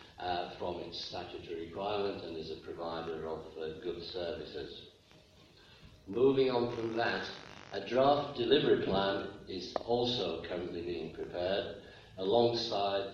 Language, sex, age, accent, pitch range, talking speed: English, male, 50-69, British, 90-120 Hz, 125 wpm